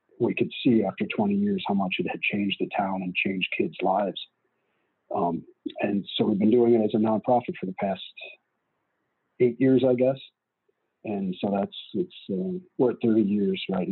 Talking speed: 190 wpm